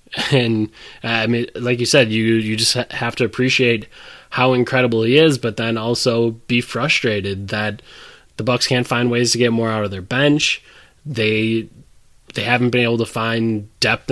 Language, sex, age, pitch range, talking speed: English, male, 20-39, 115-130 Hz, 185 wpm